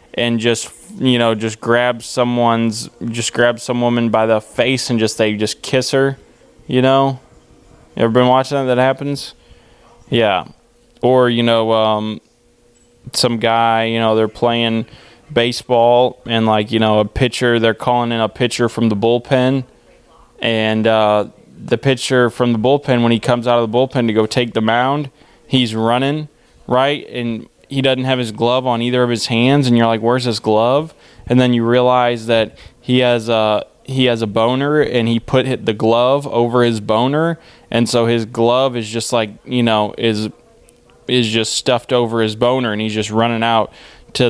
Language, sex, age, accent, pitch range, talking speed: English, male, 20-39, American, 115-130 Hz, 185 wpm